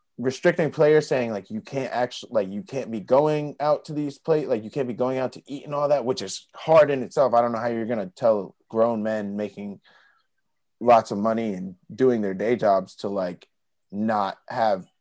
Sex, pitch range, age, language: male, 105-130 Hz, 20-39, English